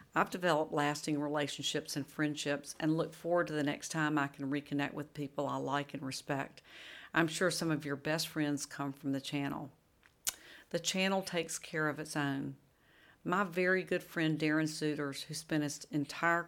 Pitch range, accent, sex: 145-160 Hz, American, female